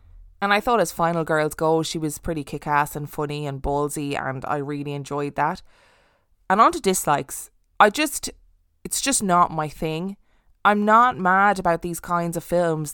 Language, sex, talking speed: English, female, 180 wpm